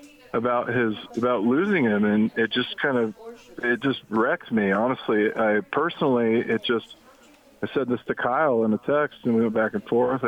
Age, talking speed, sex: 40-59, 195 wpm, male